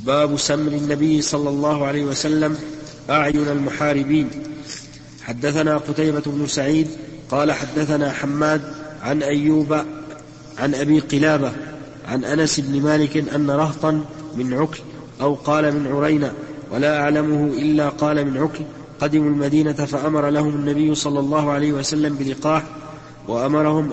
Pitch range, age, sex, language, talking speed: 145-150 Hz, 40-59, male, Arabic, 125 wpm